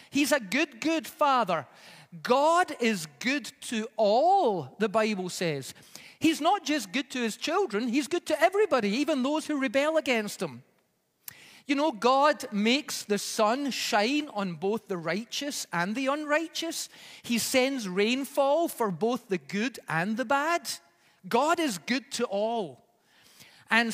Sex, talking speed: male, 150 wpm